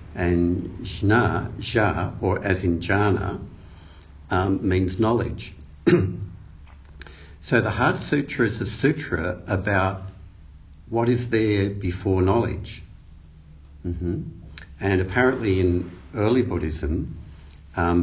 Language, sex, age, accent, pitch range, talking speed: English, male, 60-79, Australian, 80-95 Hz, 100 wpm